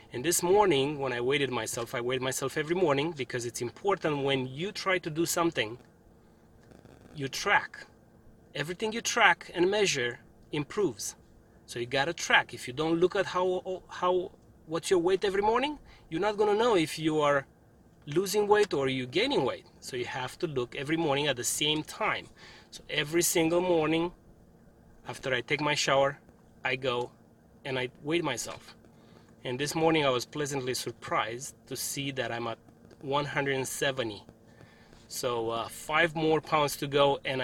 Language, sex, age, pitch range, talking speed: English, male, 30-49, 125-165 Hz, 170 wpm